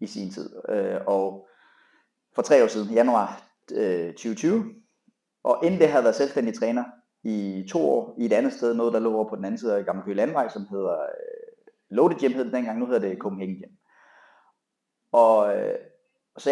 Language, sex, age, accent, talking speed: Danish, male, 30-49, native, 190 wpm